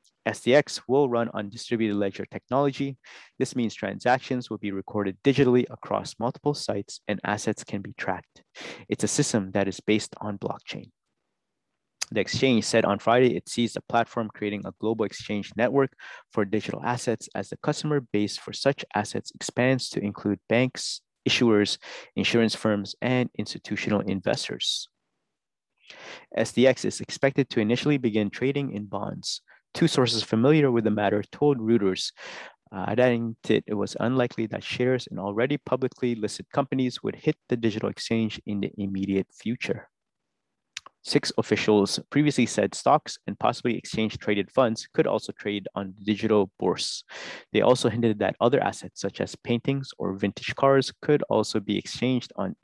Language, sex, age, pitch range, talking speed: English, male, 30-49, 105-130 Hz, 155 wpm